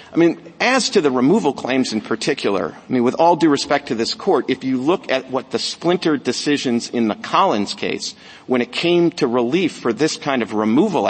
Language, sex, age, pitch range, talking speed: English, male, 50-69, 120-170 Hz, 215 wpm